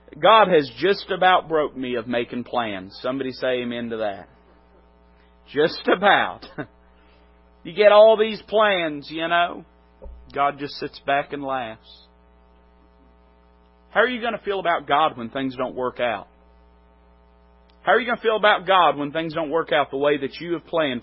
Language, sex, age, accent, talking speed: English, male, 40-59, American, 175 wpm